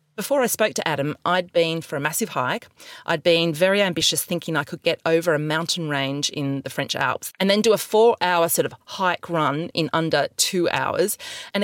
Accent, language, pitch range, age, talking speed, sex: Australian, English, 145-200 Hz, 40-59, 215 wpm, female